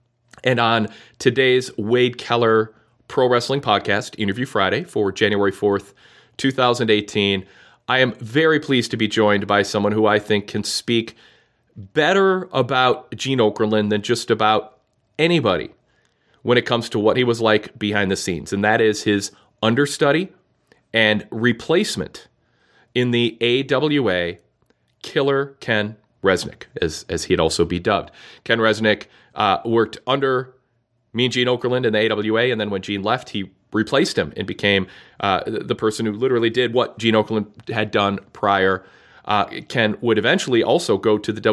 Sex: male